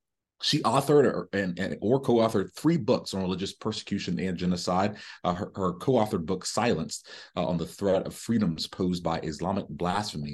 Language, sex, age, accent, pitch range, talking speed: English, male, 30-49, American, 85-105 Hz, 155 wpm